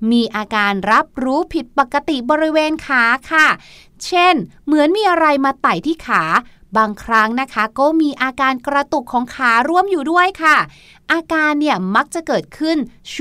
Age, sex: 20-39, female